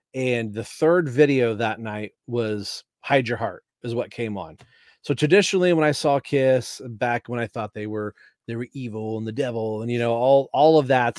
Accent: American